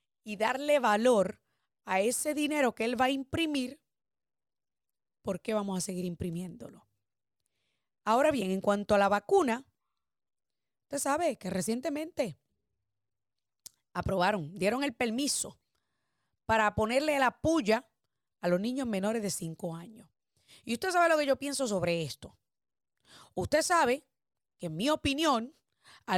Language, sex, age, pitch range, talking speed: Spanish, female, 30-49, 205-290 Hz, 135 wpm